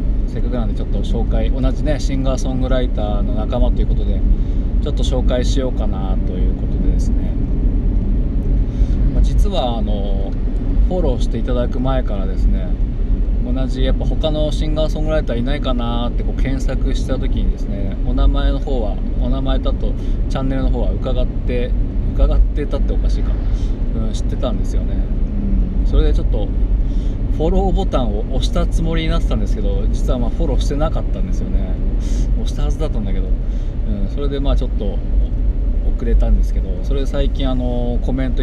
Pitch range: 95-125 Hz